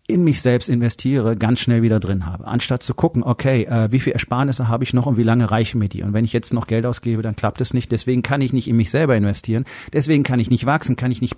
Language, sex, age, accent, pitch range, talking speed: German, male, 40-59, German, 110-130 Hz, 280 wpm